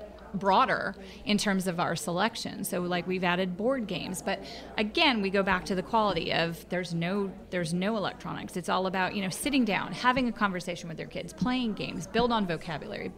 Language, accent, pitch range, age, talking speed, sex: English, American, 190-230 Hz, 30-49, 200 wpm, female